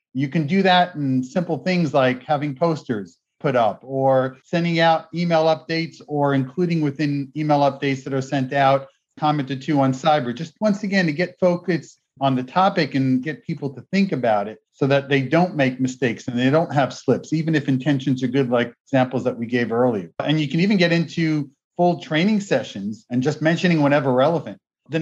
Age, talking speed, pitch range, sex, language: 40-59, 200 wpm, 130-165 Hz, male, English